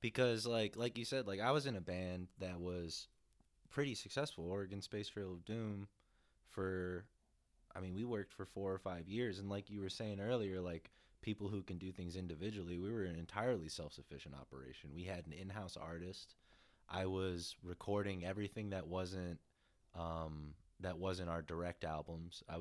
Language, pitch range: English, 80-95 Hz